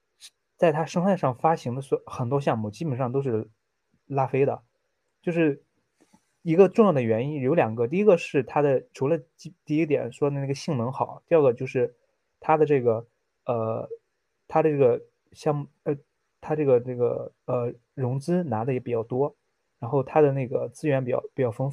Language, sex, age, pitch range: Chinese, male, 20-39, 130-160 Hz